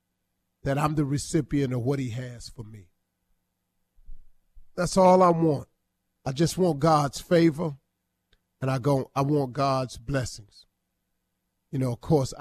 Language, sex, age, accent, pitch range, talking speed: English, male, 40-59, American, 95-150 Hz, 140 wpm